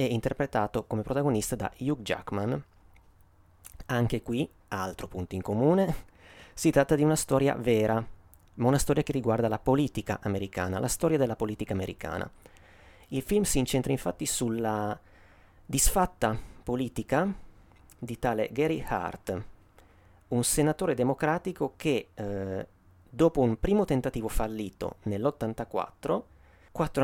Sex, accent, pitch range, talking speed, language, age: male, native, 95-135 Hz, 125 wpm, Italian, 30-49